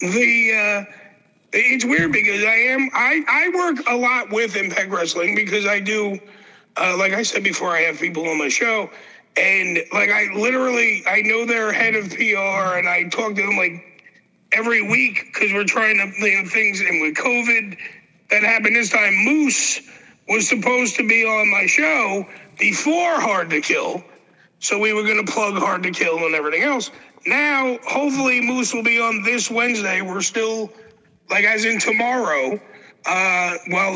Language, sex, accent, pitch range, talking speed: English, male, American, 195-240 Hz, 180 wpm